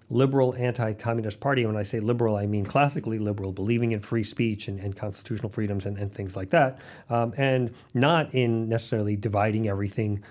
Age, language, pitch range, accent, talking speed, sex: 40-59, English, 105-135 Hz, American, 185 wpm, male